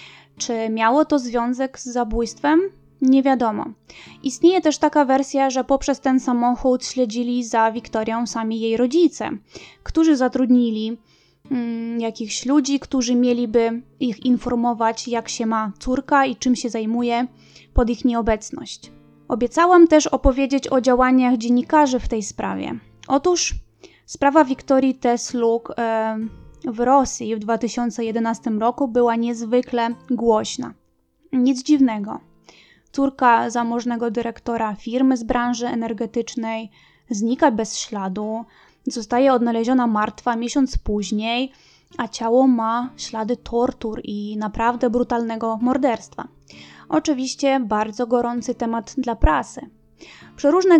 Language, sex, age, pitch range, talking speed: Polish, female, 20-39, 230-265 Hz, 110 wpm